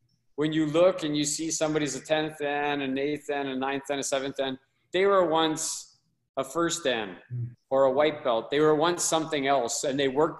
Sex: male